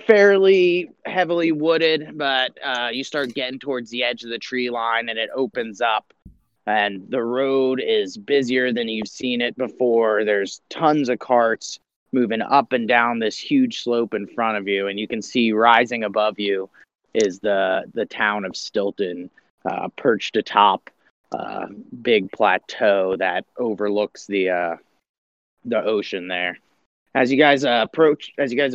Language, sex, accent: English, male, American